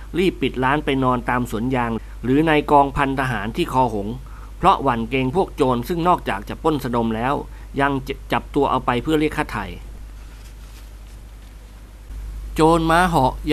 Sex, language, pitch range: male, Thai, 120-150 Hz